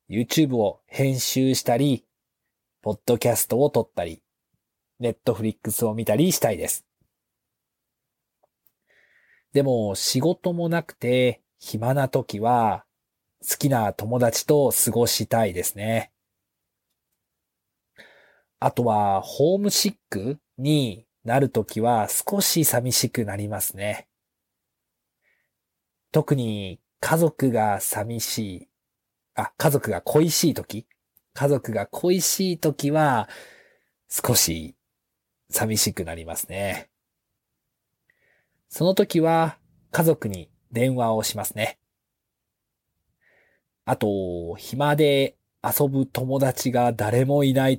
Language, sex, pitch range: Japanese, male, 110-145 Hz